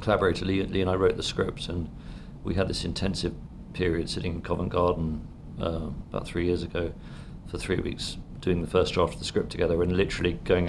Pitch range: 90-95 Hz